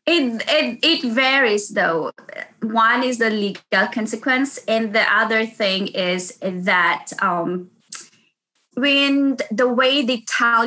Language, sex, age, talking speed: English, female, 20-39, 125 wpm